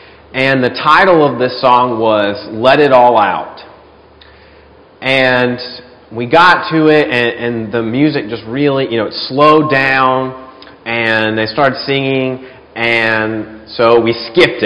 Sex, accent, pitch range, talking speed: male, American, 120-145 Hz, 145 wpm